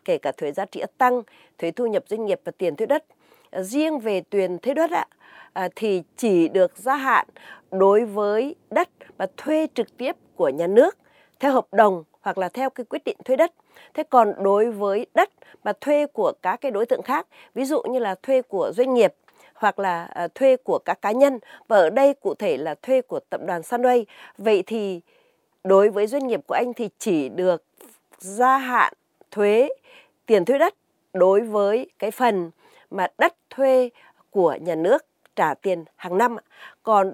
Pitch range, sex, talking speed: 200-280 Hz, female, 190 wpm